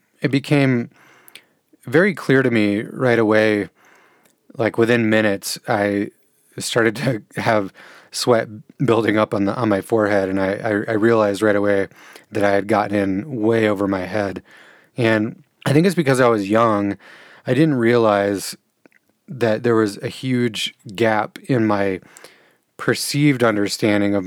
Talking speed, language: 150 wpm, English